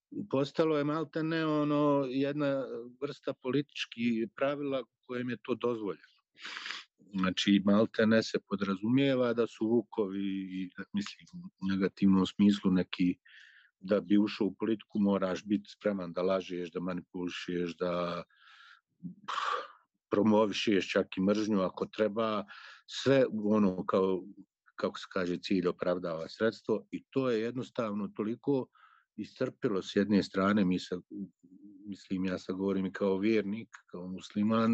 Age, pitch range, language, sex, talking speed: 50-69, 95-115 Hz, Croatian, male, 125 wpm